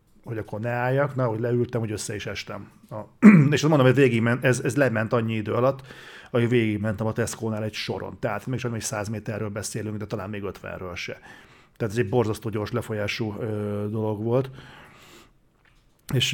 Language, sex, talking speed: Hungarian, male, 180 wpm